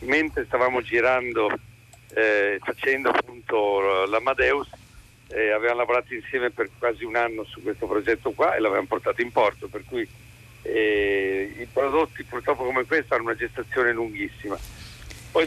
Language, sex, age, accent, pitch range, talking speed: Italian, male, 50-69, native, 115-150 Hz, 145 wpm